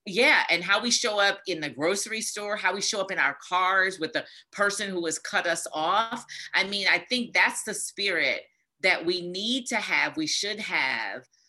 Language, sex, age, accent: English, female, 40-59, American